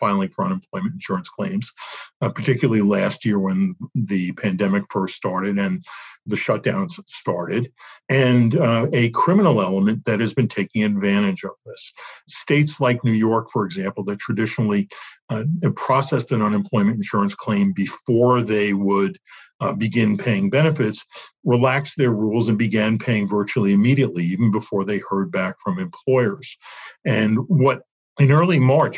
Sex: male